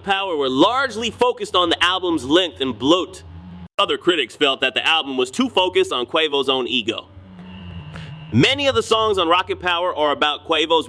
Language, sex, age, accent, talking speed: English, male, 30-49, American, 180 wpm